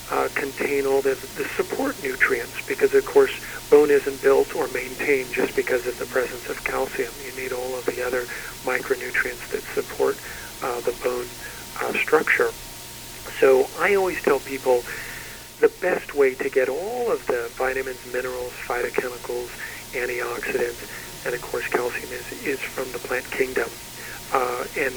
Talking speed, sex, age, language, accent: 155 wpm, male, 50-69, English, American